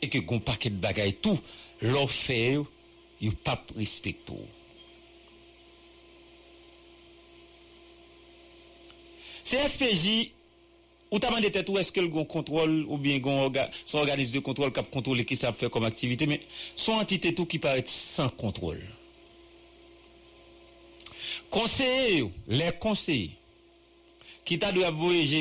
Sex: male